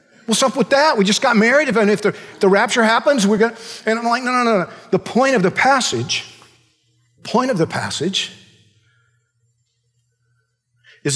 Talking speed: 195 wpm